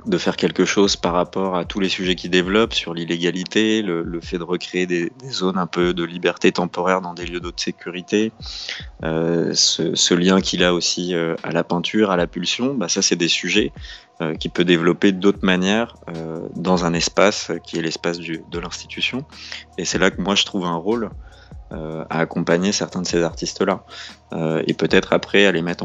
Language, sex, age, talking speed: French, male, 20-39, 200 wpm